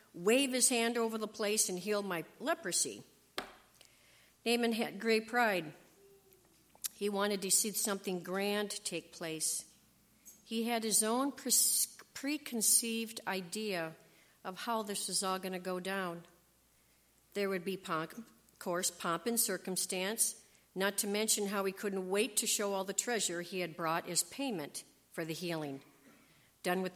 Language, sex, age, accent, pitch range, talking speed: English, female, 50-69, American, 170-225 Hz, 150 wpm